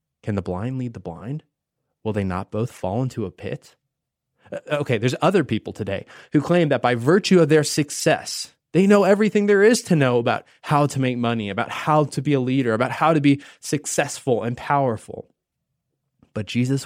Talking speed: 190 wpm